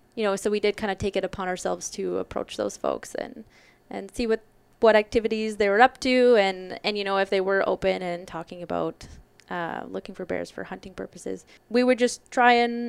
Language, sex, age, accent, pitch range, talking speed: English, female, 20-39, American, 190-220 Hz, 225 wpm